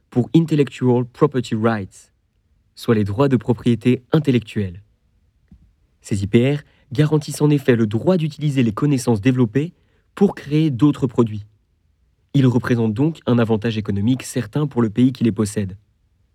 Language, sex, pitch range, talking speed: French, male, 105-140 Hz, 140 wpm